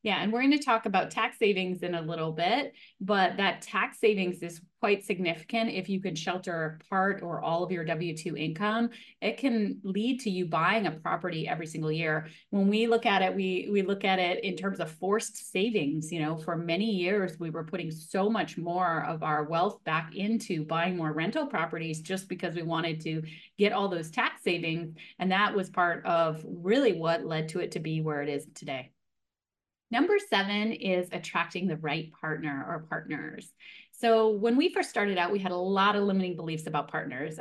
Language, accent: English, American